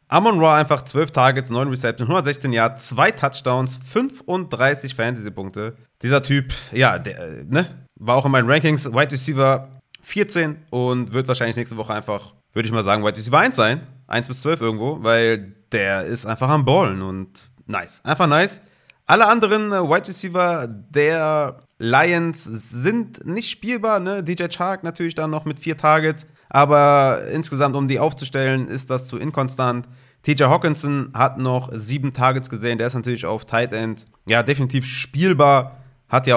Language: German